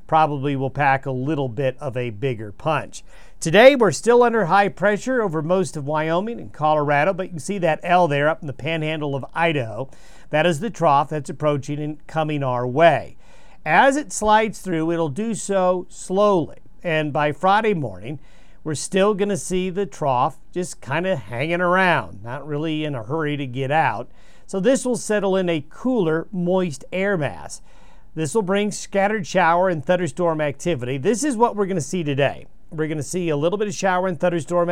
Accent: American